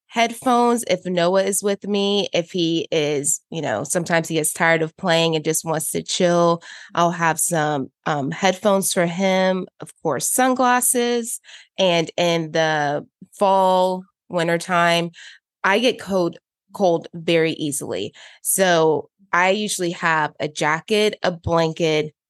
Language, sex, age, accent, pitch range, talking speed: English, female, 20-39, American, 160-195 Hz, 140 wpm